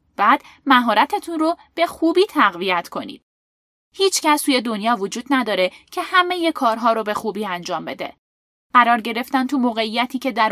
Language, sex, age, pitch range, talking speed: Persian, female, 10-29, 230-325 Hz, 155 wpm